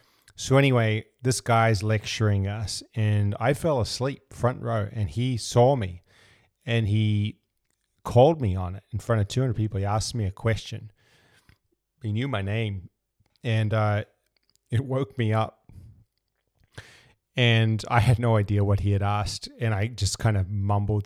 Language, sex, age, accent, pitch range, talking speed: English, male, 30-49, American, 105-125 Hz, 160 wpm